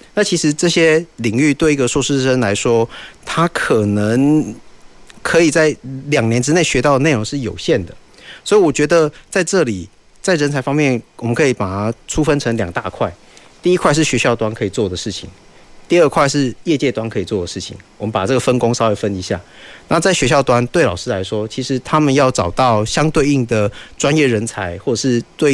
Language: Chinese